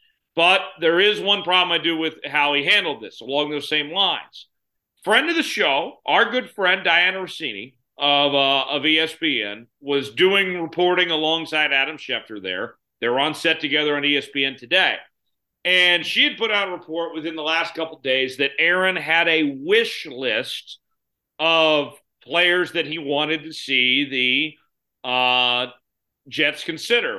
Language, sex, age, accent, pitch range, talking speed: English, male, 40-59, American, 145-180 Hz, 165 wpm